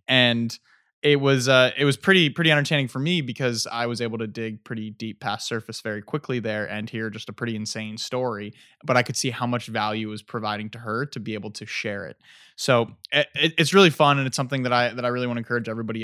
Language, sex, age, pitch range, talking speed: English, male, 20-39, 115-145 Hz, 245 wpm